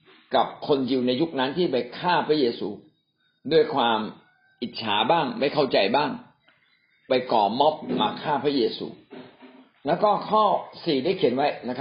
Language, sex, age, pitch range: Thai, male, 60-79, 135-200 Hz